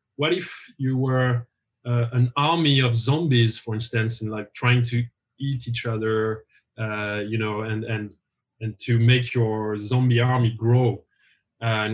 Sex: male